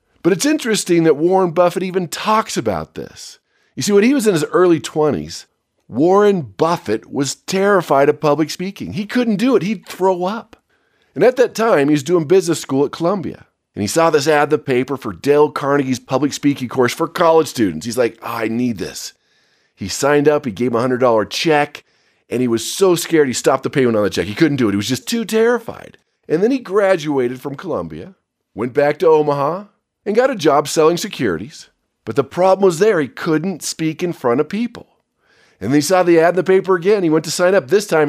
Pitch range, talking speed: 135-195 Hz, 220 wpm